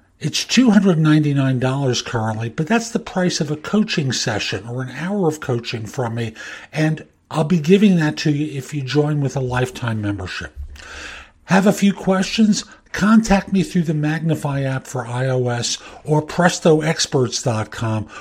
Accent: American